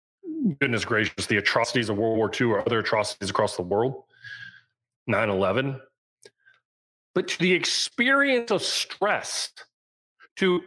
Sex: male